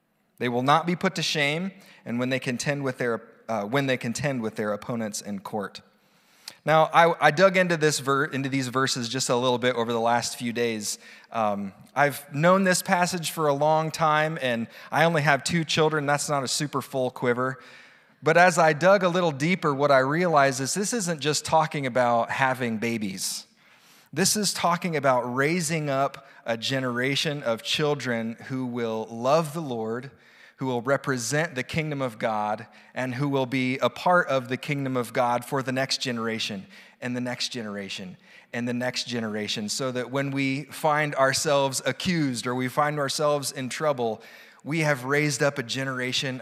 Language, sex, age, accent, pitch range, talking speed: English, male, 30-49, American, 120-150 Hz, 185 wpm